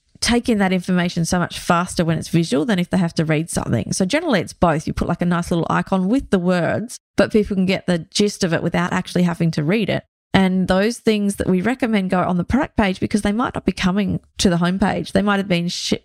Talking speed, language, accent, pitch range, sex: 260 wpm, English, Australian, 170-200 Hz, female